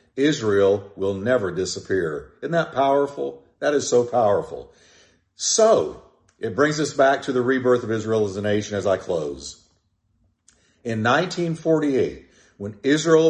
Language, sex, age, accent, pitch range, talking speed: English, male, 50-69, American, 105-150 Hz, 140 wpm